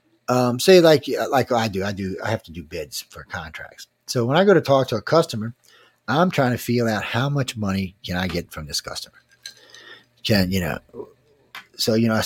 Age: 40-59